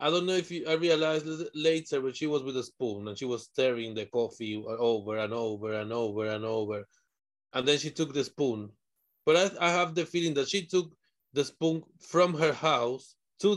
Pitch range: 130-170 Hz